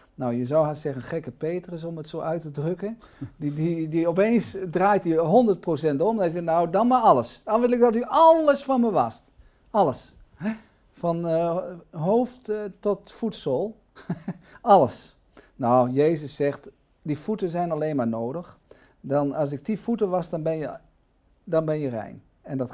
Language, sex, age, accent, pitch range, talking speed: Dutch, male, 50-69, Dutch, 140-195 Hz, 185 wpm